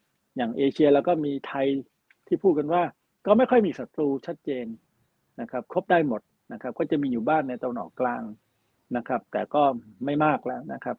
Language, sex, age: Thai, male, 60-79